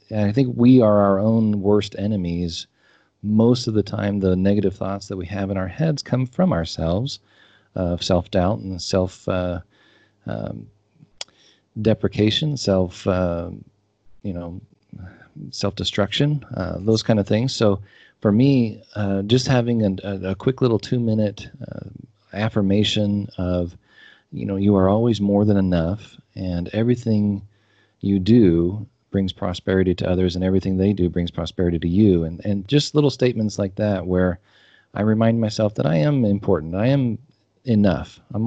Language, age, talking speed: English, 40-59, 150 wpm